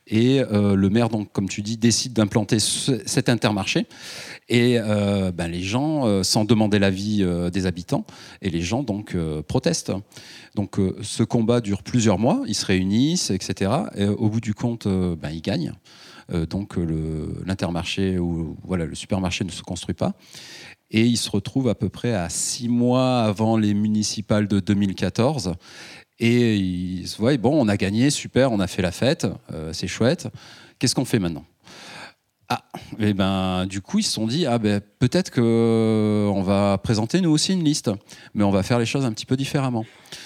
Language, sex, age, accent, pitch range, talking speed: French, male, 30-49, French, 95-120 Hz, 185 wpm